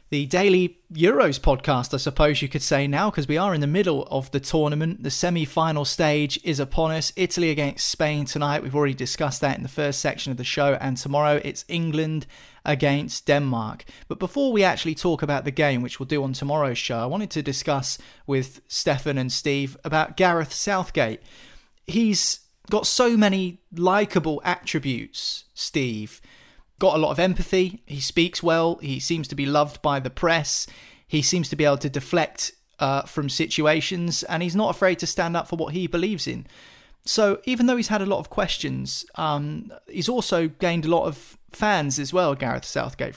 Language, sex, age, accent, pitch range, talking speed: English, male, 30-49, British, 140-175 Hz, 190 wpm